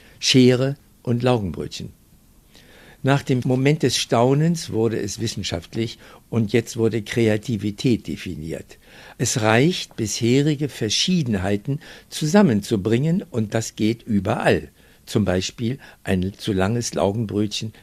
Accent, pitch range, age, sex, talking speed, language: German, 110-145 Hz, 60-79, male, 105 wpm, German